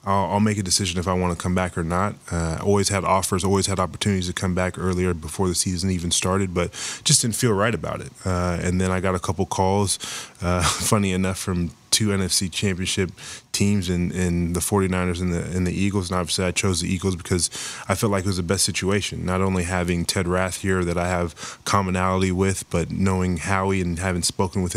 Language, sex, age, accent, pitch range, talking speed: English, male, 20-39, American, 90-100 Hz, 220 wpm